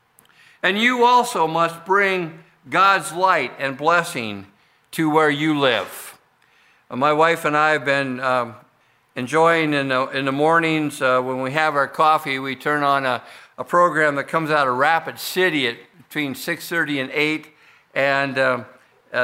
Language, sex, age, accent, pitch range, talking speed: English, male, 50-69, American, 130-170 Hz, 155 wpm